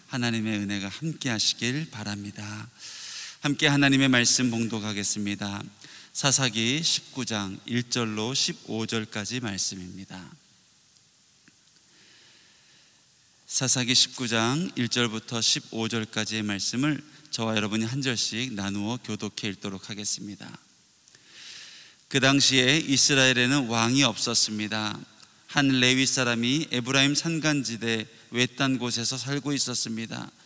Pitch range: 110-135 Hz